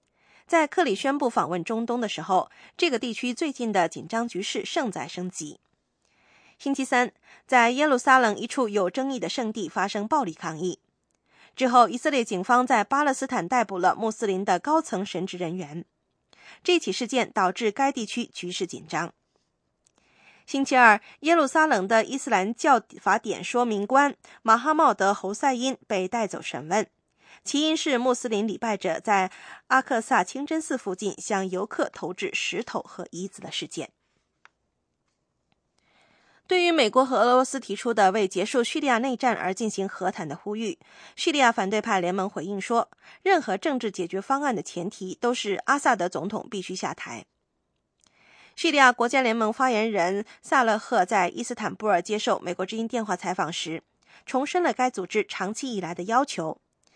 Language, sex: English, female